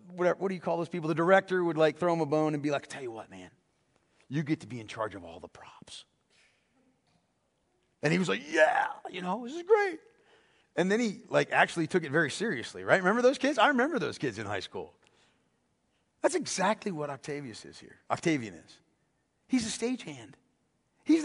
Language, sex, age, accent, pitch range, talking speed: English, male, 40-59, American, 125-195 Hz, 210 wpm